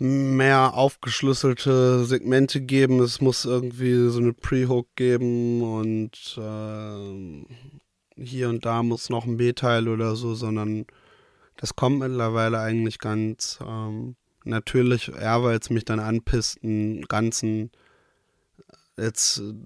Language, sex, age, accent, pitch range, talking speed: German, male, 20-39, German, 105-120 Hz, 115 wpm